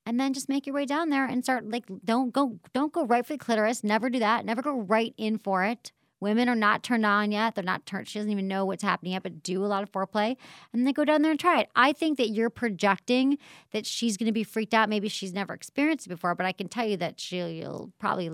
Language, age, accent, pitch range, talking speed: English, 40-59, American, 180-245 Hz, 280 wpm